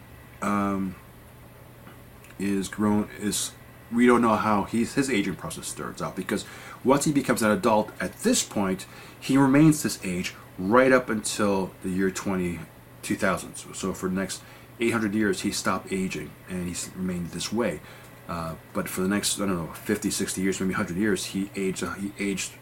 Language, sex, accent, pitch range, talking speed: English, male, American, 95-120 Hz, 180 wpm